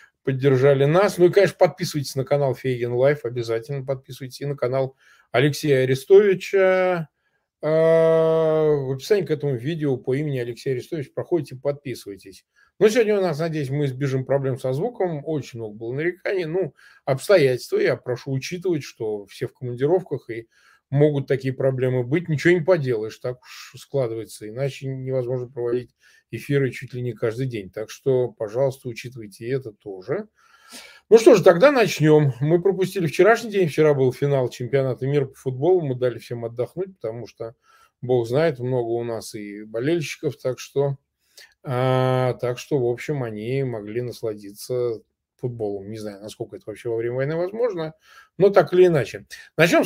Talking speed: 160 wpm